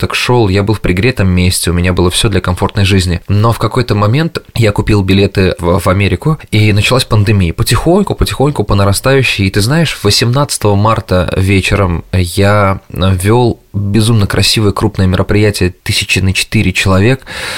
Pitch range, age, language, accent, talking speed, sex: 95-110 Hz, 20-39, Russian, native, 160 wpm, male